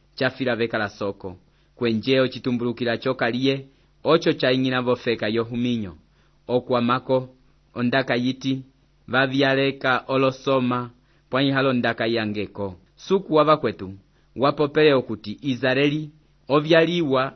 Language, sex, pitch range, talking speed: English, male, 120-135 Hz, 110 wpm